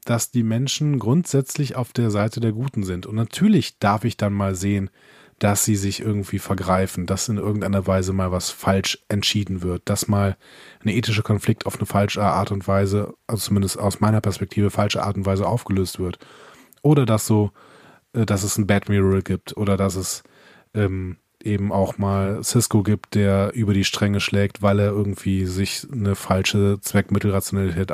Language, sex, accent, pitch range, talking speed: German, male, German, 100-130 Hz, 180 wpm